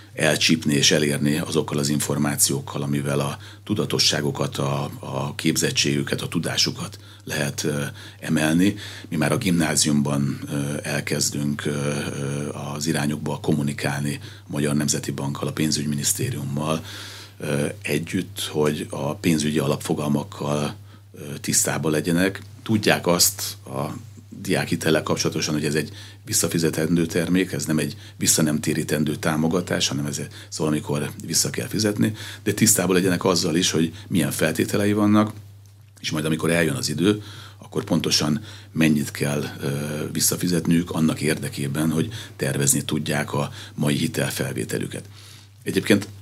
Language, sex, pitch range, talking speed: Hungarian, male, 75-100 Hz, 120 wpm